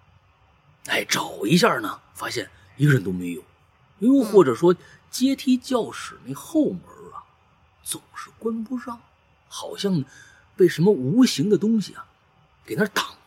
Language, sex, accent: Chinese, male, native